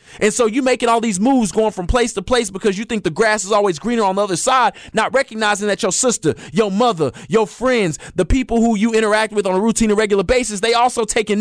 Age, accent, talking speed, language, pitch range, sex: 20-39, American, 250 wpm, English, 210-255 Hz, male